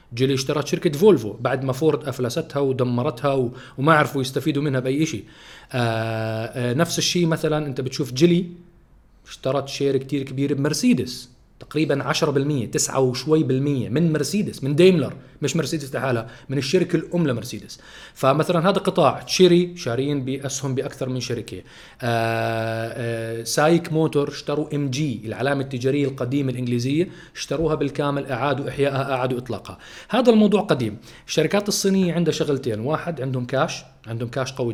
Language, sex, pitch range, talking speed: Arabic, male, 125-160 Hz, 140 wpm